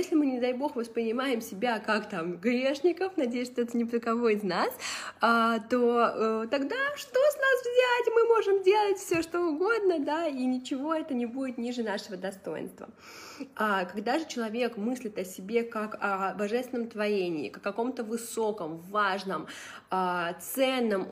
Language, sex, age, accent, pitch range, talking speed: Russian, female, 20-39, native, 210-270 Hz, 170 wpm